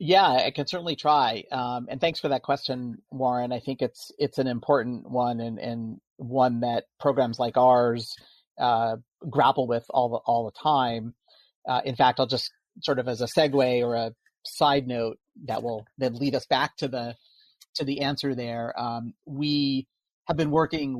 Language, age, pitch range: English, 40-59, 115-140 Hz